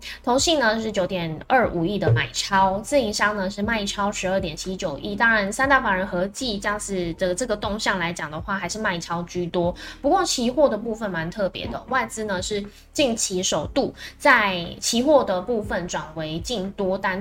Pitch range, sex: 180-230 Hz, female